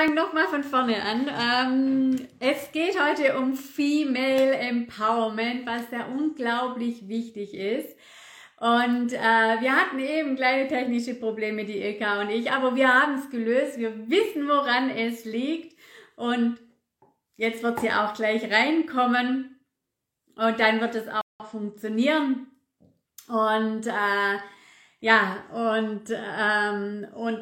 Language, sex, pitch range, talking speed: German, female, 220-265 Hz, 130 wpm